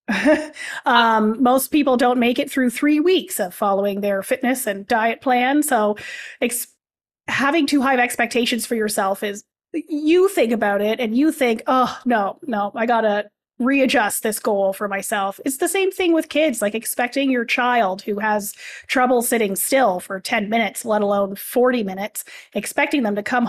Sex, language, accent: female, English, American